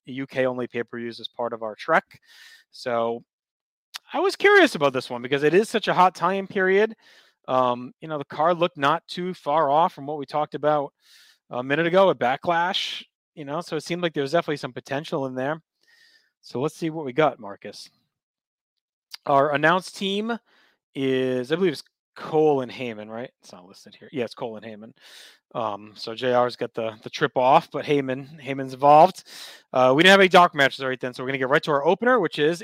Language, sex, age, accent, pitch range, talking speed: English, male, 30-49, American, 130-175 Hz, 210 wpm